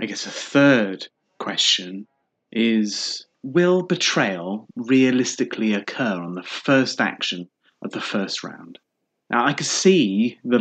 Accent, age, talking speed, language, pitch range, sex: British, 30-49, 130 wpm, English, 105-145 Hz, male